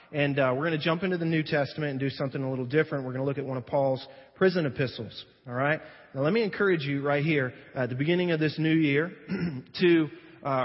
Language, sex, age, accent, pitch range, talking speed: English, male, 30-49, American, 135-165 Hz, 250 wpm